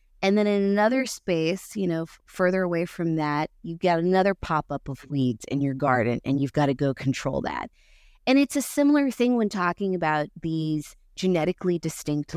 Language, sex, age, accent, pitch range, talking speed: English, female, 30-49, American, 150-185 Hz, 185 wpm